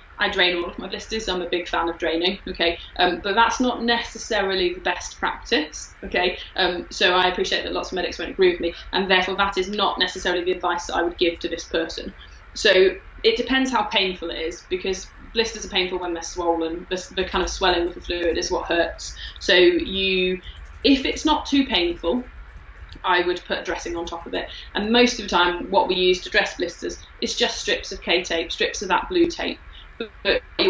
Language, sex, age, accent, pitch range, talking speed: English, female, 20-39, British, 170-195 Hz, 220 wpm